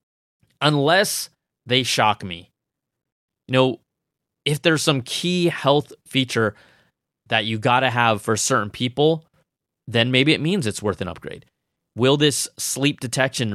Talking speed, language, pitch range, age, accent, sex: 135 wpm, English, 115-140 Hz, 20-39, American, male